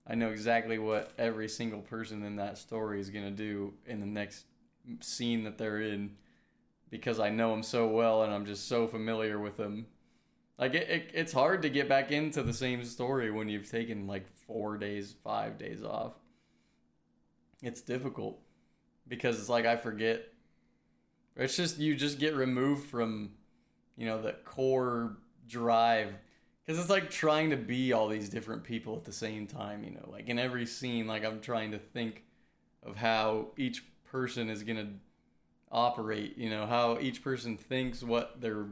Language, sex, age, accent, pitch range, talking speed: English, male, 20-39, American, 105-120 Hz, 180 wpm